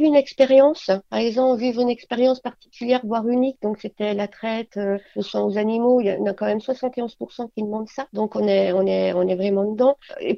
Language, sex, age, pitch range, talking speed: French, female, 40-59, 195-250 Hz, 225 wpm